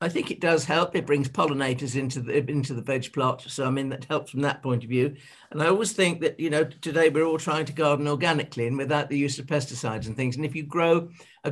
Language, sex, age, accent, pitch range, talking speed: English, male, 50-69, British, 140-165 Hz, 265 wpm